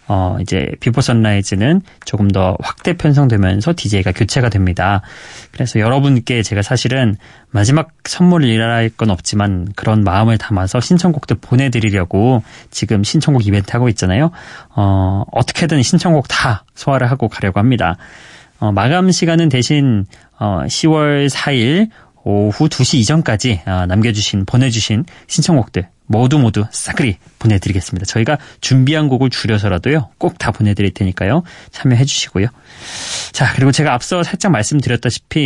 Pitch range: 105-140 Hz